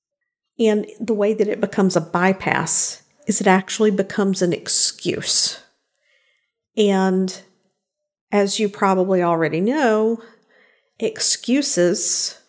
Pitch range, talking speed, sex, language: 185-225 Hz, 100 wpm, female, English